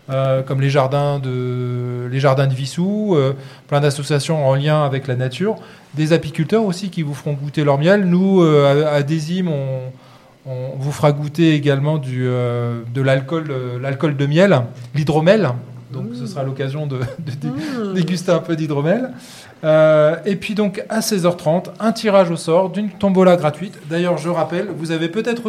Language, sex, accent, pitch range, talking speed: French, male, French, 140-195 Hz, 175 wpm